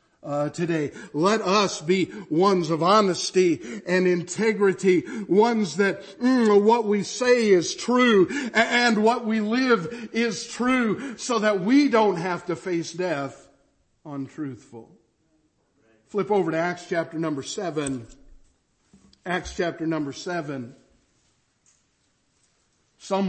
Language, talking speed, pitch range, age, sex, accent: English, 115 wpm, 155-210 Hz, 50-69, male, American